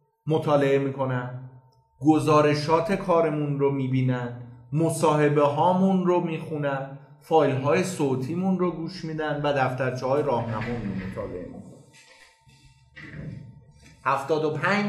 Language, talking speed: Persian, 95 wpm